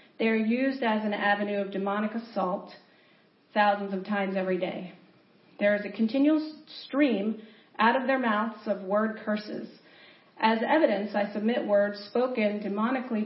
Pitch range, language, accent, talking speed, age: 195-220 Hz, English, American, 150 wpm, 40-59